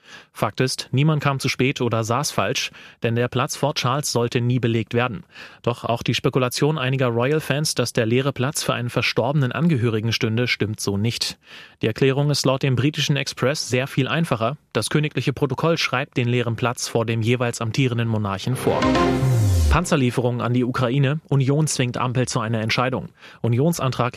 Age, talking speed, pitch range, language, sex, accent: 30-49, 175 wpm, 115-140 Hz, German, male, German